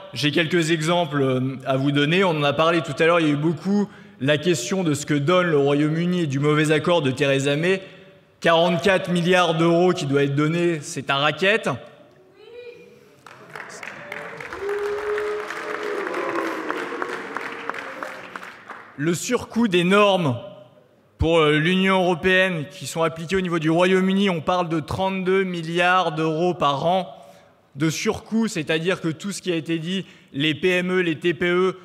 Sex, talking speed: male, 150 wpm